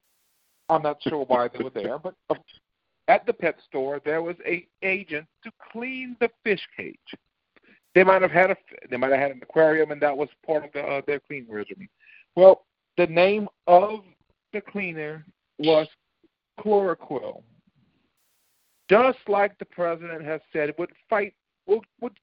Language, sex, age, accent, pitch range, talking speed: English, male, 50-69, American, 150-200 Hz, 165 wpm